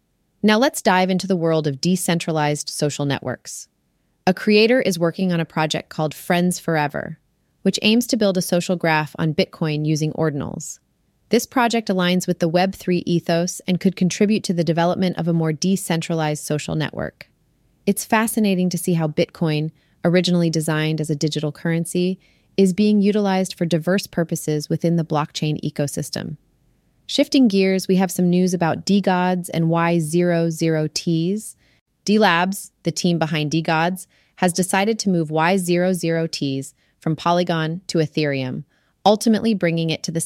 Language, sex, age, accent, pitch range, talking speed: English, female, 30-49, American, 160-190 Hz, 150 wpm